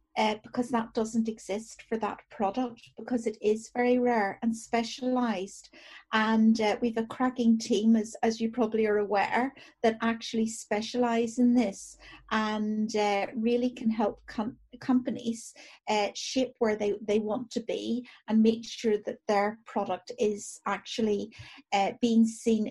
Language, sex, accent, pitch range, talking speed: English, female, British, 215-245 Hz, 155 wpm